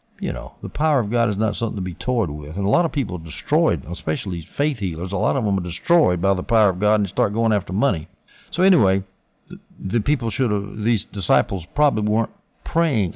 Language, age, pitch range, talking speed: English, 60-79, 95-120 Hz, 235 wpm